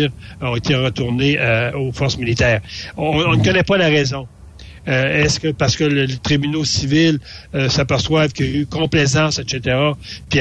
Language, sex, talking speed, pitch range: French, male, 185 wpm, 125-150 Hz